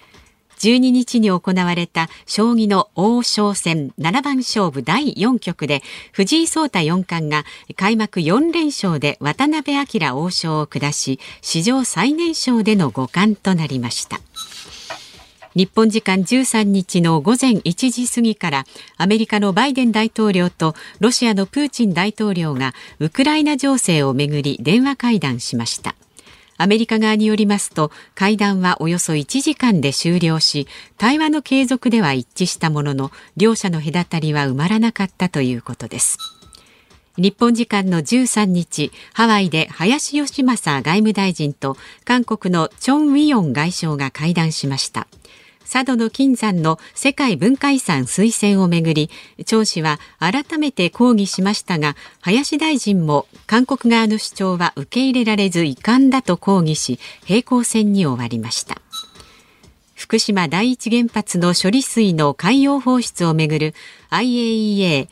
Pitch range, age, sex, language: 160-245 Hz, 50-69, female, Japanese